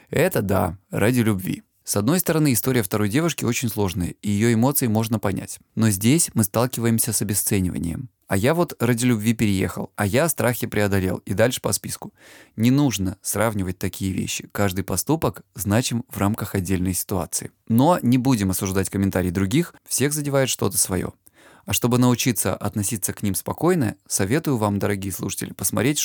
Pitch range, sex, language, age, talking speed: 100-125 Hz, male, Russian, 20-39, 165 wpm